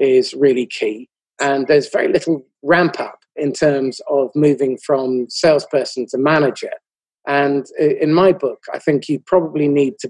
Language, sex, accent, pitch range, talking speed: English, male, British, 140-175 Hz, 160 wpm